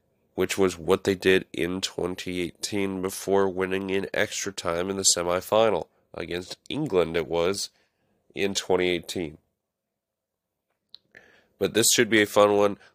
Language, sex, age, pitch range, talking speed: English, male, 30-49, 85-100 Hz, 130 wpm